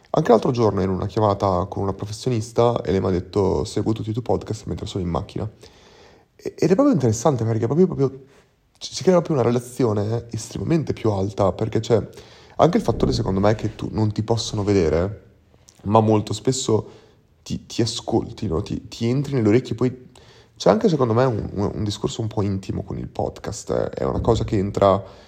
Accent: native